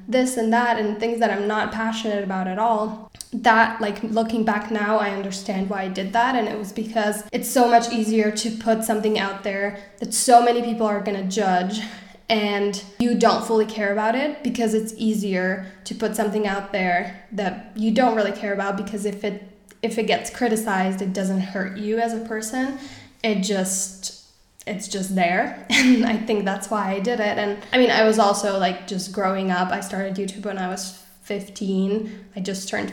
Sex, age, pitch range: female, 10-29, 200-230 Hz